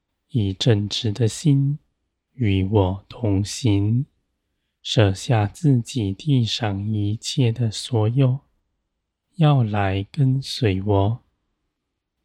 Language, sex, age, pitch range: Chinese, male, 20-39, 100-125 Hz